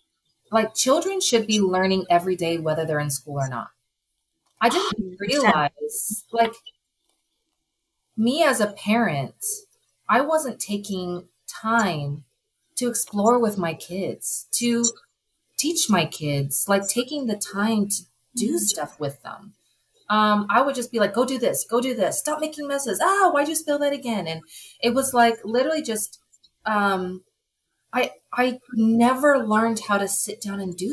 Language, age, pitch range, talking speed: English, 30-49, 175-235 Hz, 155 wpm